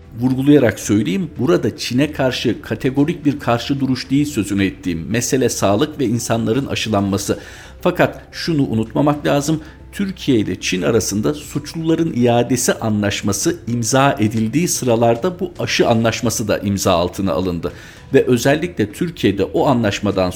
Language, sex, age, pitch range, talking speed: Turkish, male, 50-69, 100-140 Hz, 125 wpm